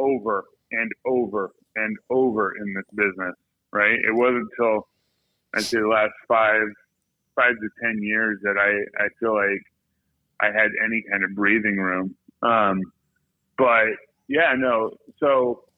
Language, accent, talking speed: English, American, 145 wpm